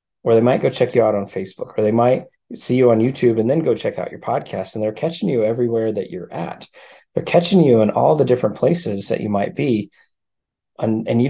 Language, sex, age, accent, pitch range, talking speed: English, male, 30-49, American, 105-125 Hz, 245 wpm